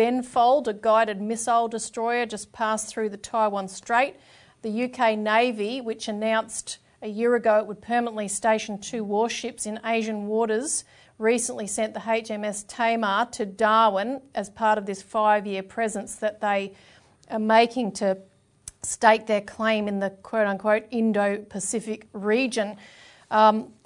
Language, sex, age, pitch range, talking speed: English, female, 40-59, 200-225 Hz, 140 wpm